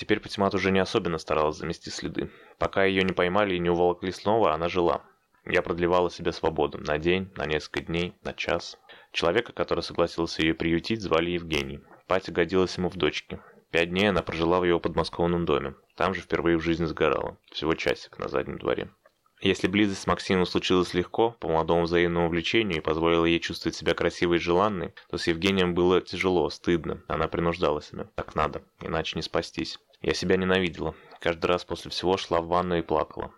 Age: 20-39